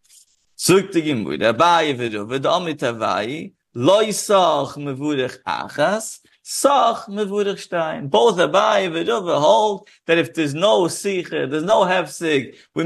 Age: 50-69